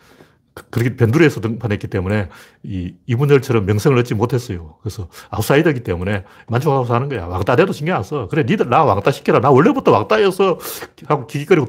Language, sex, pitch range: Korean, male, 100-155 Hz